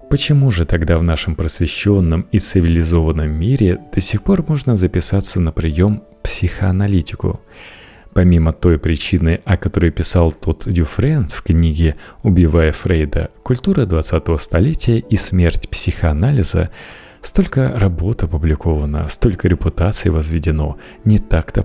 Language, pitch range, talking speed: Russian, 80-105 Hz, 120 wpm